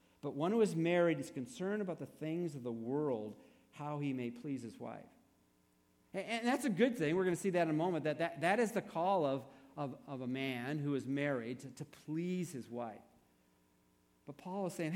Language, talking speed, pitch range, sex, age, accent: English, 215 wpm, 120-185 Hz, male, 50-69, American